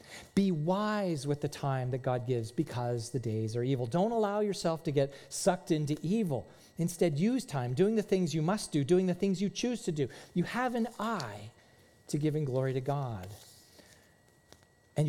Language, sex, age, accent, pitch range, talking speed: English, male, 40-59, American, 145-195 Hz, 185 wpm